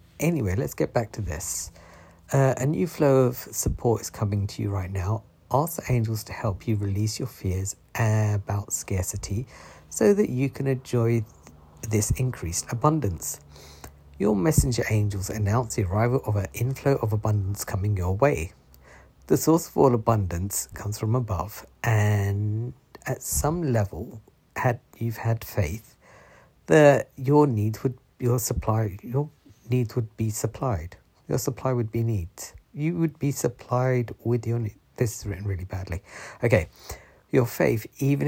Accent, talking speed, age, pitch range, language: British, 155 wpm, 50-69, 100-125 Hz, English